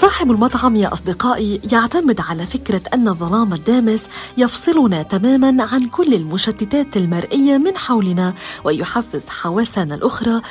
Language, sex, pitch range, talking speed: Arabic, female, 190-265 Hz, 120 wpm